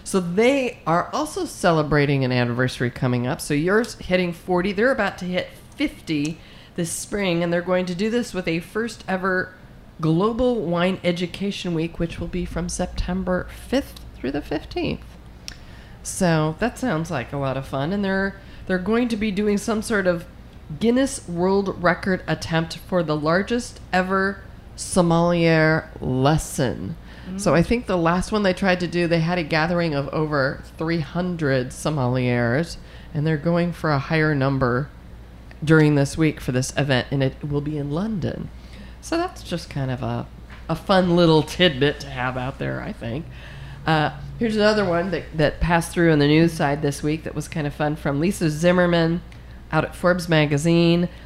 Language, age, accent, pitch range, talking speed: English, 30-49, American, 145-185 Hz, 175 wpm